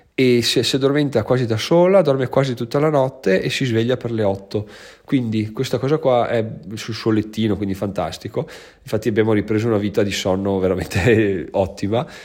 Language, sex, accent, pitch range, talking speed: Italian, male, native, 105-125 Hz, 180 wpm